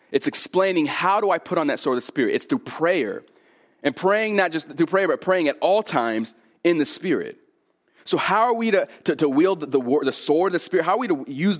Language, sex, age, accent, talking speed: English, male, 30-49, American, 250 wpm